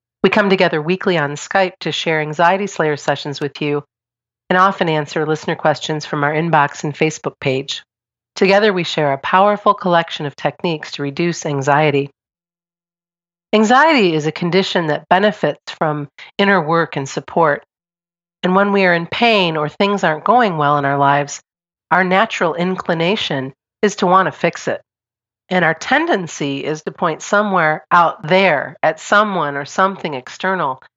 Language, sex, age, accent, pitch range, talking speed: English, female, 40-59, American, 145-190 Hz, 160 wpm